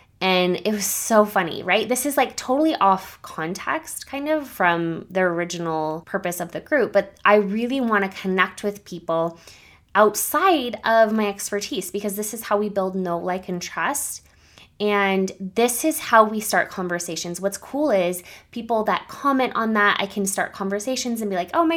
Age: 20-39